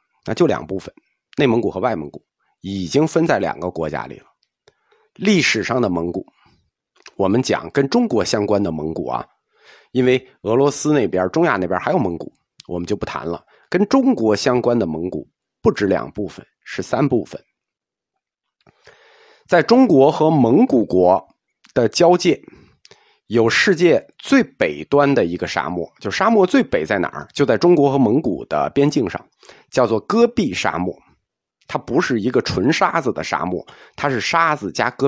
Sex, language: male, Chinese